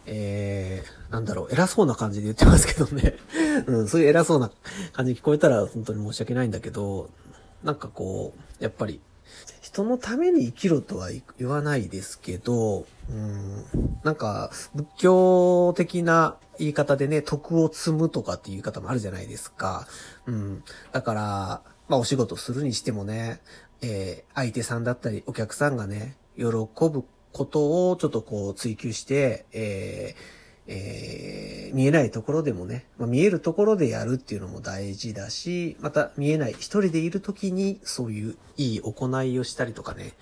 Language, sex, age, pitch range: Japanese, male, 40-59, 105-155 Hz